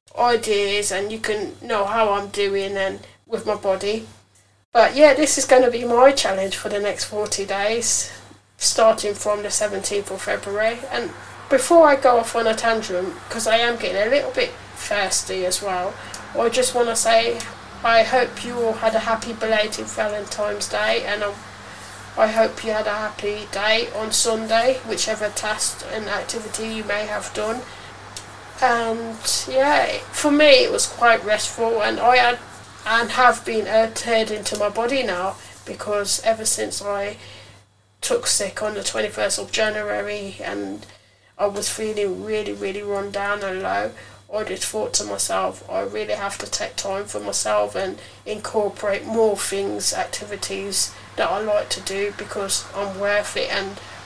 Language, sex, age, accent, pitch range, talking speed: English, female, 10-29, British, 200-230 Hz, 170 wpm